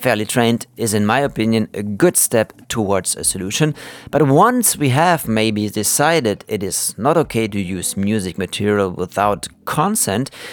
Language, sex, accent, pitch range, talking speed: English, male, German, 110-155 Hz, 160 wpm